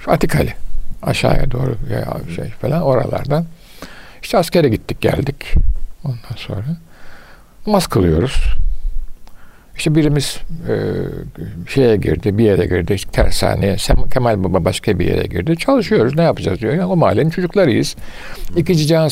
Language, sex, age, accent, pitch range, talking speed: Turkish, male, 60-79, native, 100-155 Hz, 125 wpm